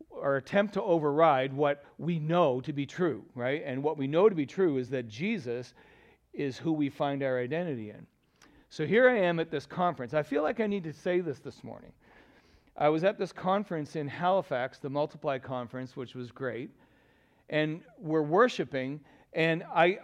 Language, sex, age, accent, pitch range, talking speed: English, male, 40-59, American, 145-190 Hz, 190 wpm